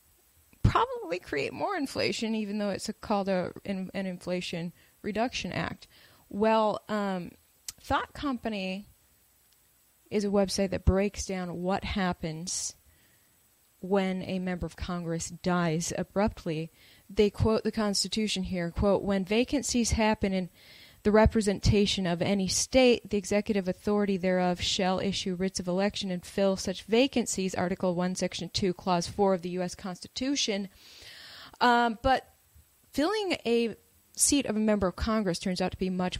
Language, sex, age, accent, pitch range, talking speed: English, female, 20-39, American, 175-210 Hz, 140 wpm